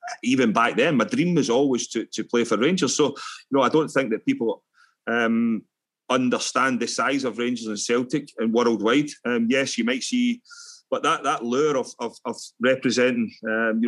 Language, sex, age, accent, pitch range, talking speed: English, male, 30-49, British, 130-180 Hz, 195 wpm